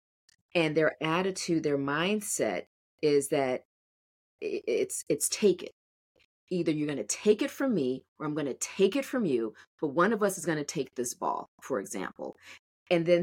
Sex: female